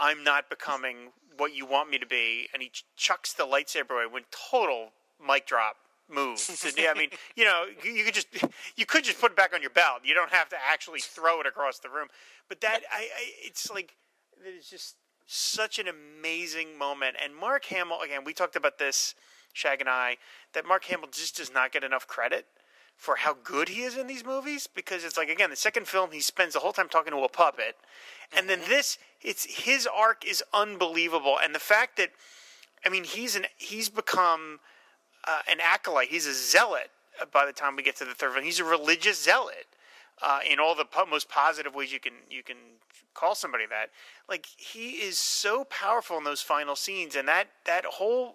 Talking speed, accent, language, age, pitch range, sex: 210 wpm, American, English, 30-49, 150-235 Hz, male